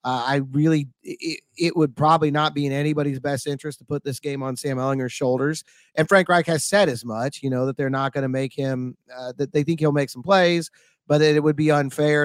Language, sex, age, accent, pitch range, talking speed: English, male, 30-49, American, 140-165 Hz, 250 wpm